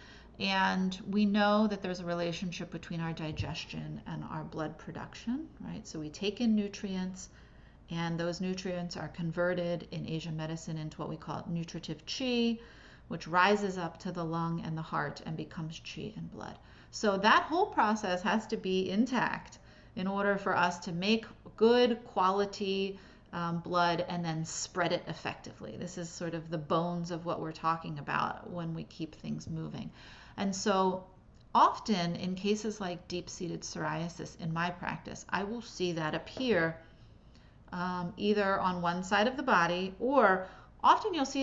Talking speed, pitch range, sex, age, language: 165 wpm, 170-210 Hz, female, 30-49, English